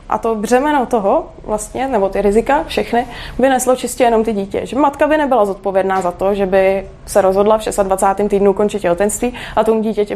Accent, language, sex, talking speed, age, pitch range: native, Czech, female, 205 wpm, 20-39, 205-255 Hz